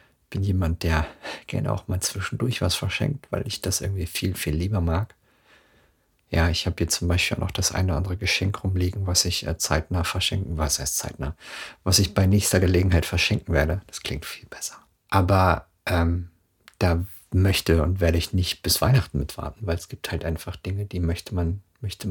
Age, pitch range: 50-69, 85-105 Hz